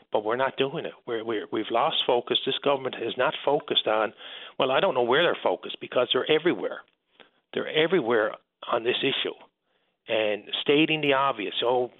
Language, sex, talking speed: English, male, 180 wpm